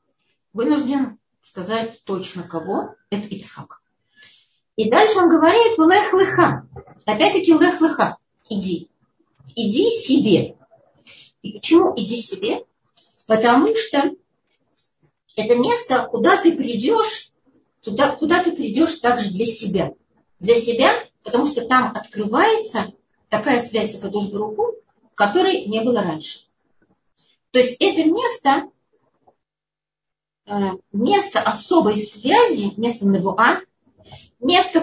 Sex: female